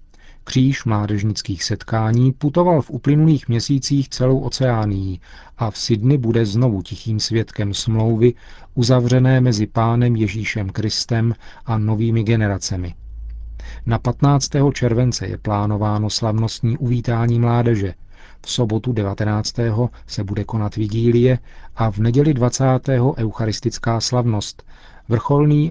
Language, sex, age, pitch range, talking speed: Czech, male, 40-59, 105-125 Hz, 110 wpm